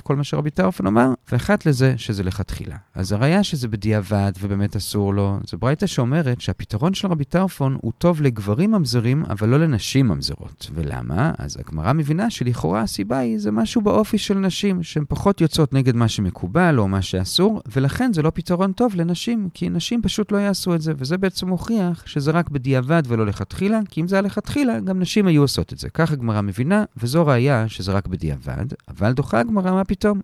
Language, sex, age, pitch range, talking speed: Hebrew, male, 40-59, 105-175 Hz, 160 wpm